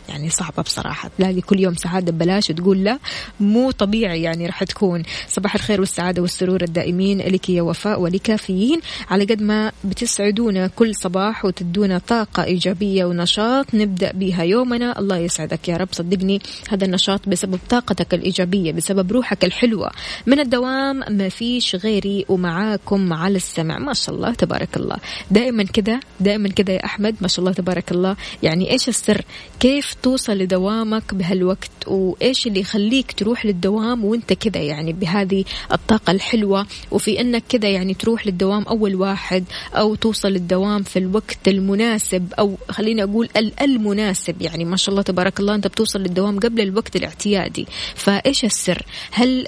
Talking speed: 150 wpm